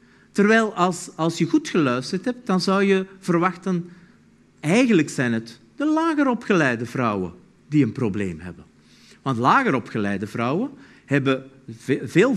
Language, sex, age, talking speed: Dutch, male, 50-69, 125 wpm